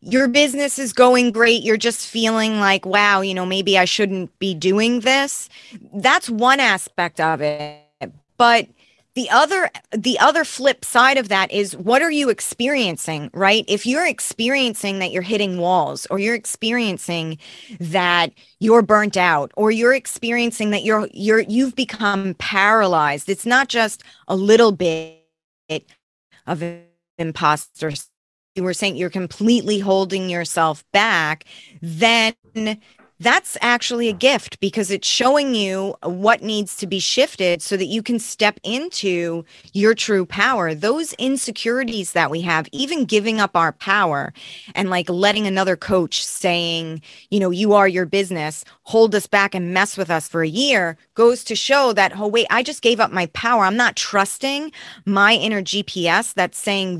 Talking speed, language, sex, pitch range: 160 wpm, English, female, 180-235 Hz